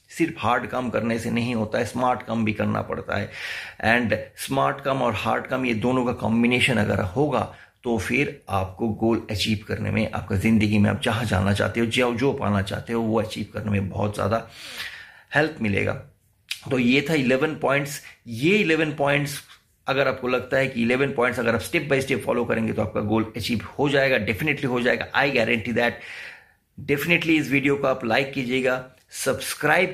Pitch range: 110-135 Hz